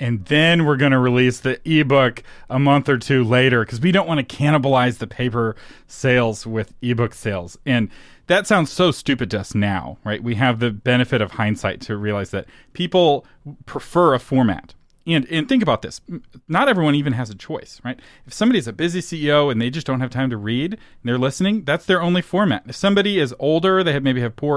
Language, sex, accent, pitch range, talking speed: English, male, American, 115-155 Hz, 215 wpm